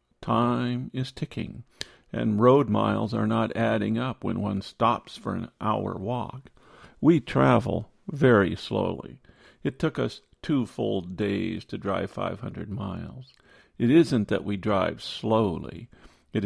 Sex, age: male, 50-69